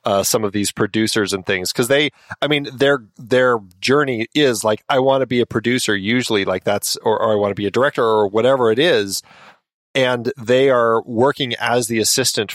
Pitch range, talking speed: 105-130 Hz, 210 wpm